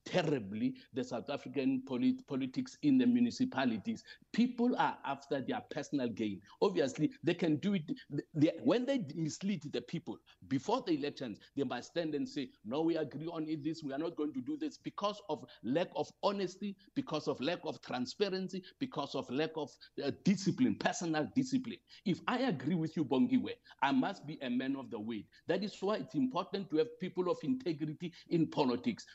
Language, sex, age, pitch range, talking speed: English, male, 50-69, 160-245 Hz, 185 wpm